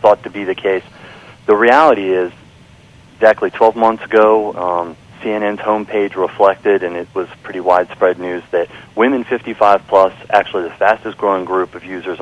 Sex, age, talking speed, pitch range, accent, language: male, 40-59, 150 wpm, 100-120 Hz, American, English